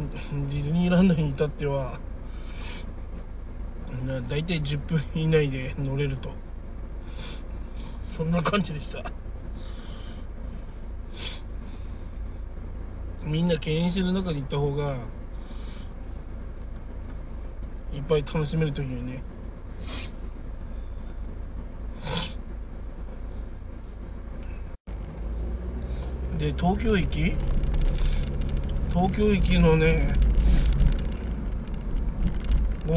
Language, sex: Japanese, male